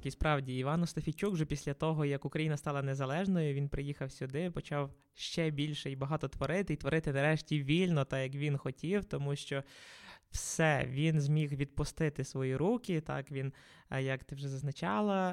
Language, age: Ukrainian, 20-39